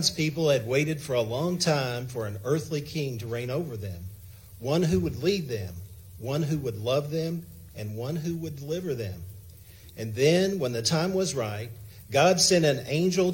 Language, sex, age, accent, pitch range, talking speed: English, male, 50-69, American, 105-170 Hz, 195 wpm